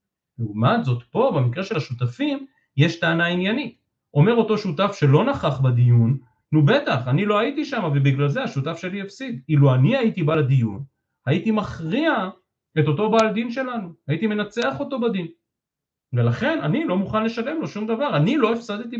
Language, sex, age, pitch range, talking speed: Hebrew, male, 40-59, 130-210 Hz, 165 wpm